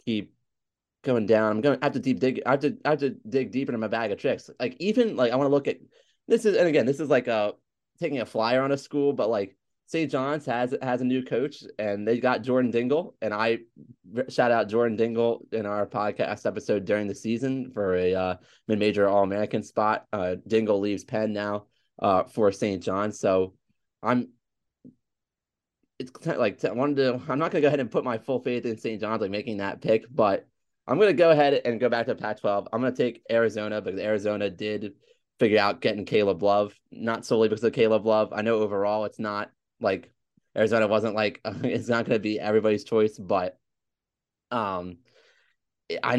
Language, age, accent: English, 20-39, American